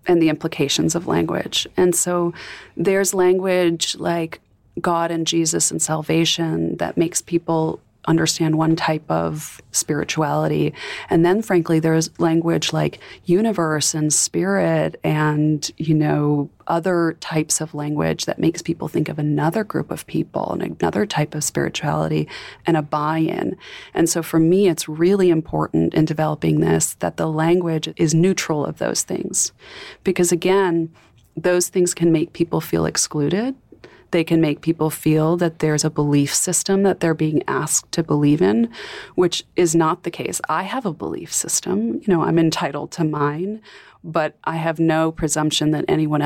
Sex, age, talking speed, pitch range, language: female, 30-49, 160 wpm, 150-175 Hz, English